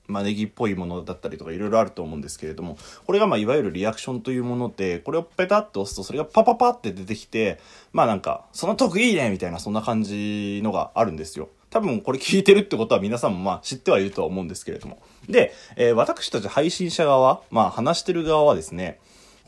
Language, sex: Japanese, male